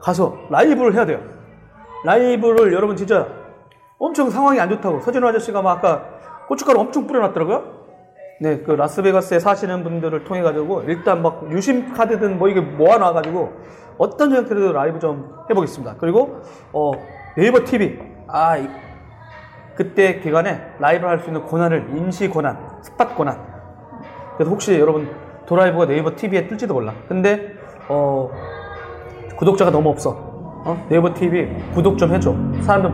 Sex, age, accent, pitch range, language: male, 30-49, native, 150-195 Hz, Korean